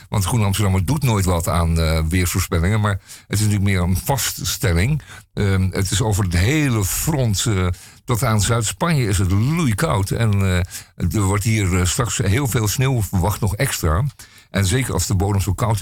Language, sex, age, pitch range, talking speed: Dutch, male, 50-69, 95-115 Hz, 190 wpm